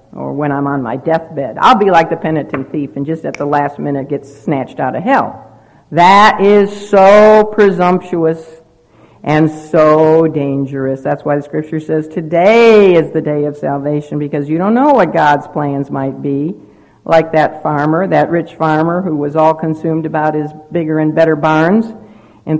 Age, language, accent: 60-79, English, American